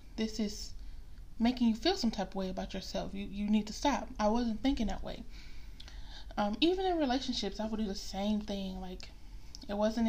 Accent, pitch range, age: American, 195-240 Hz, 10-29